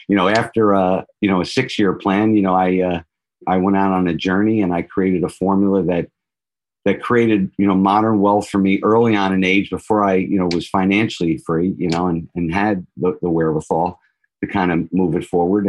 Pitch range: 90-105 Hz